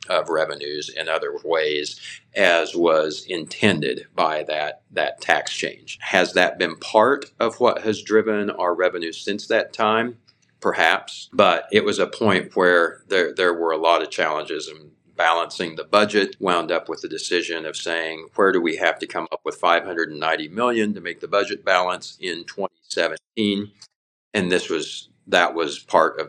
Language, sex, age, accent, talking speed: English, male, 50-69, American, 170 wpm